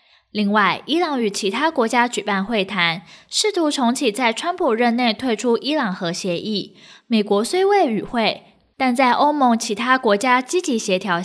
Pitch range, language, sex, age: 195-270 Hz, Chinese, female, 10-29